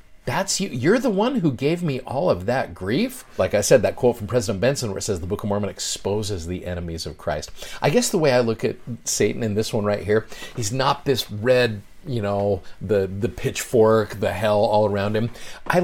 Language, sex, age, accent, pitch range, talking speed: English, male, 40-59, American, 100-130 Hz, 225 wpm